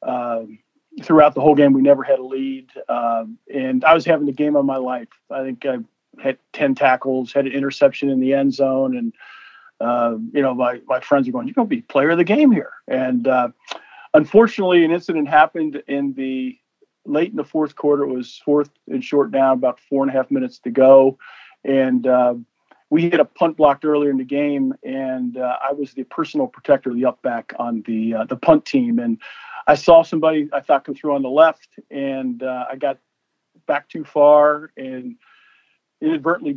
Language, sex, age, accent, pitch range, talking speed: English, male, 40-59, American, 130-170 Hz, 205 wpm